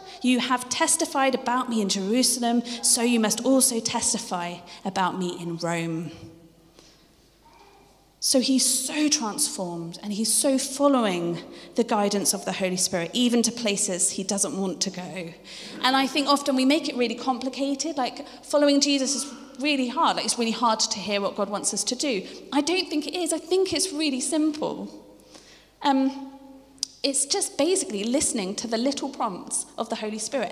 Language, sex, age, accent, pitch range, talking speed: English, female, 30-49, British, 210-285 Hz, 175 wpm